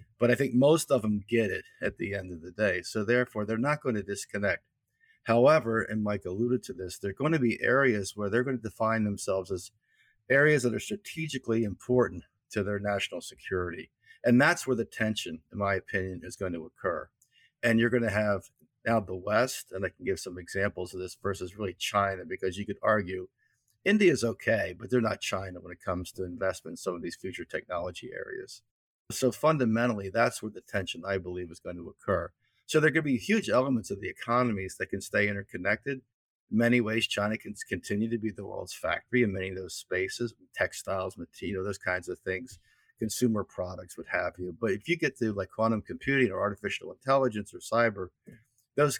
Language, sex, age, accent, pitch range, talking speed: English, male, 50-69, American, 95-125 Hz, 205 wpm